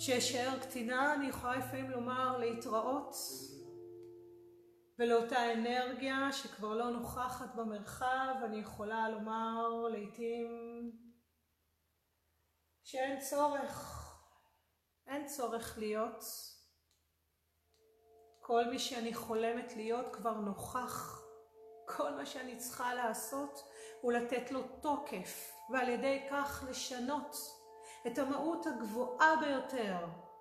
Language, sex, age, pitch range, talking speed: Hebrew, female, 40-59, 220-265 Hz, 90 wpm